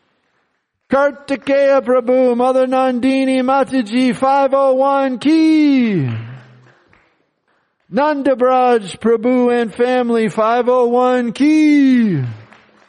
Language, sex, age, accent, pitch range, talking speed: English, male, 50-69, American, 185-265 Hz, 80 wpm